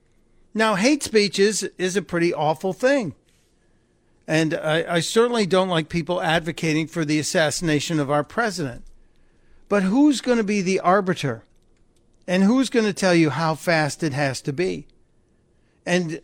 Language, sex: English, male